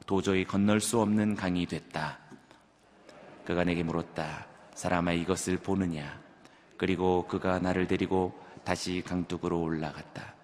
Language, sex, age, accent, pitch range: Korean, male, 30-49, native, 90-105 Hz